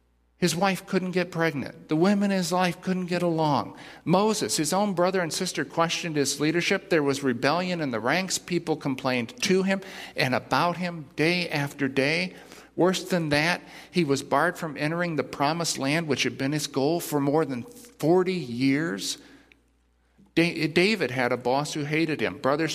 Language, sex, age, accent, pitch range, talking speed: English, male, 50-69, American, 130-175 Hz, 175 wpm